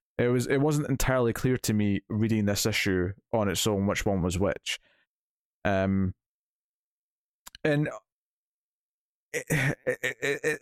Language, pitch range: English, 105-140 Hz